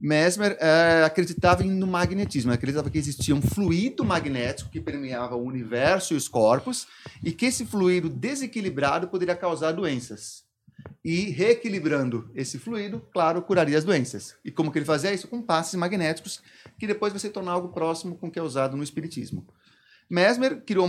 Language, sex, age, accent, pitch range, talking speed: Portuguese, male, 30-49, Brazilian, 145-190 Hz, 165 wpm